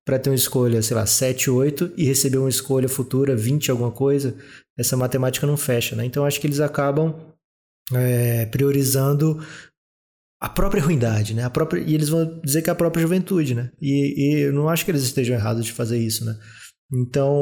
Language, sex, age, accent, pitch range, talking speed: Portuguese, male, 20-39, Brazilian, 120-145 Hz, 190 wpm